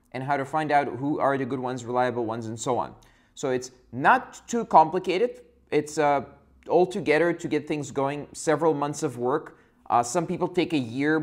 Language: English